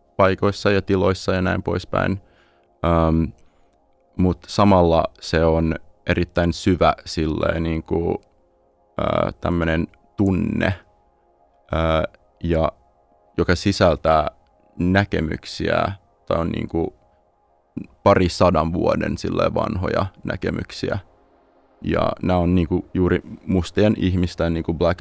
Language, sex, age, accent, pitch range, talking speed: Finnish, male, 30-49, native, 80-95 Hz, 95 wpm